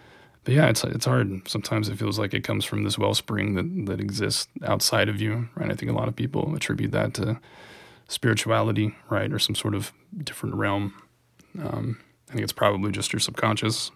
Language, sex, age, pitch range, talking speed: English, male, 20-39, 105-125 Hz, 200 wpm